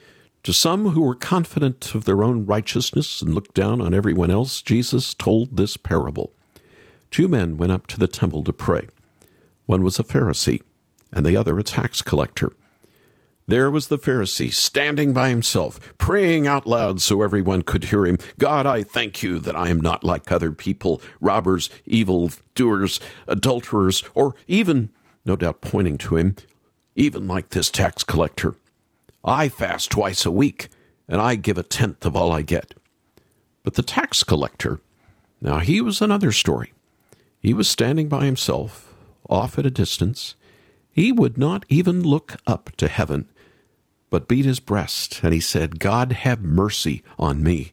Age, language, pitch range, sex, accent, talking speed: 50-69, English, 90-135 Hz, male, American, 165 wpm